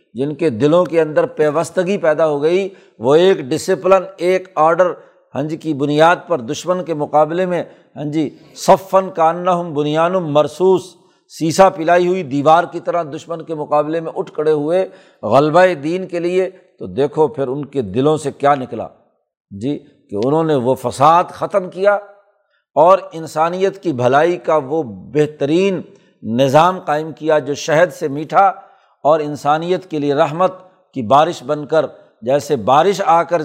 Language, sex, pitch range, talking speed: Urdu, male, 150-185 Hz, 160 wpm